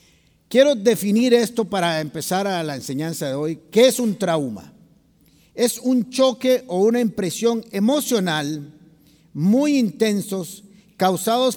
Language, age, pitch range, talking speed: Spanish, 50-69, 180-245 Hz, 125 wpm